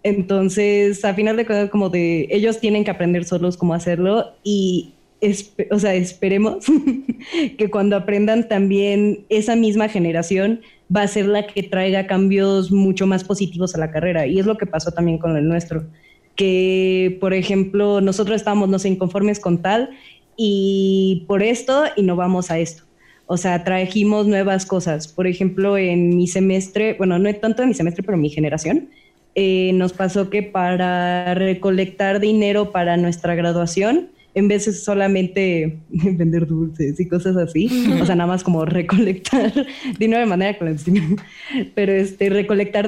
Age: 20-39